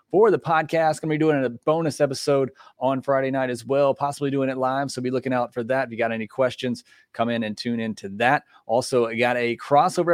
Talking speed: 250 wpm